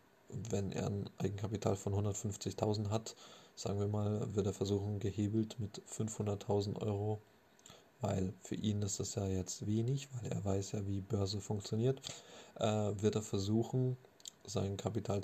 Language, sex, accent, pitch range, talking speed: German, male, German, 100-110 Hz, 150 wpm